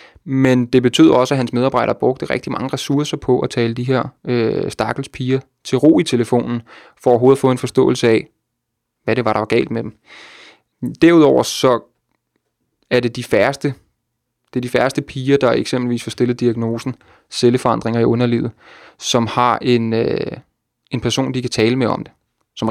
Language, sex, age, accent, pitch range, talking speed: Danish, male, 20-39, native, 115-130 Hz, 180 wpm